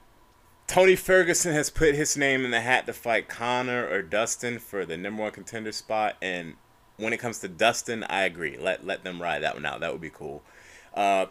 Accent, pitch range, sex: American, 90-115 Hz, male